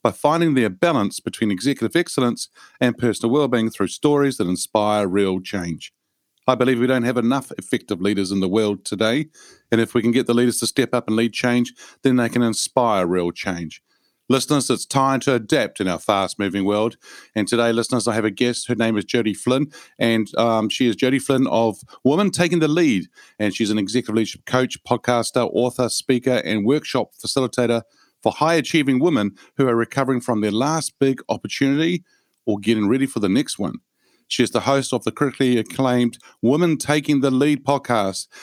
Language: English